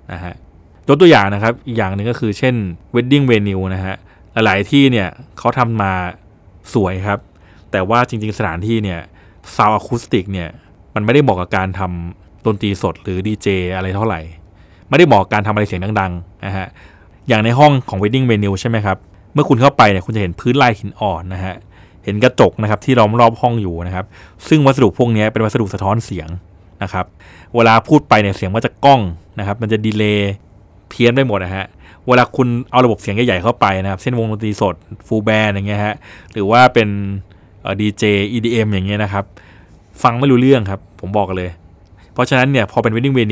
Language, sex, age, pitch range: Thai, male, 20-39, 95-115 Hz